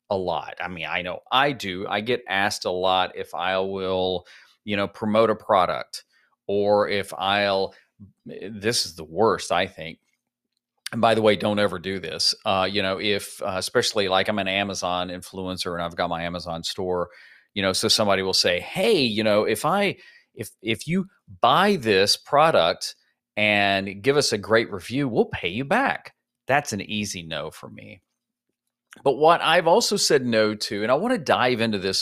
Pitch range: 95-115 Hz